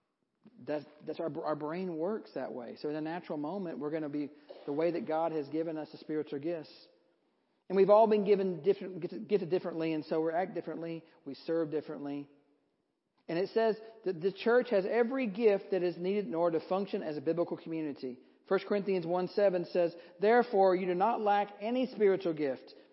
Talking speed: 200 wpm